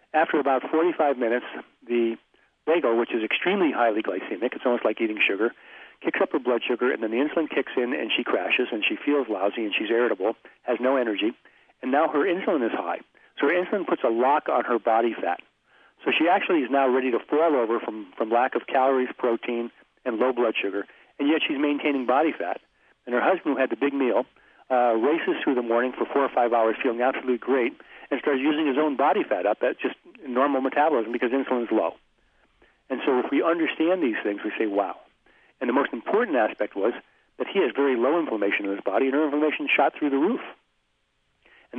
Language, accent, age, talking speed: English, American, 50-69, 215 wpm